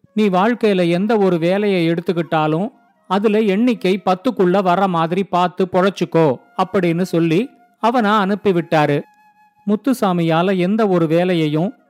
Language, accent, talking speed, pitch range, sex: Tamil, native, 105 wpm, 180-220 Hz, male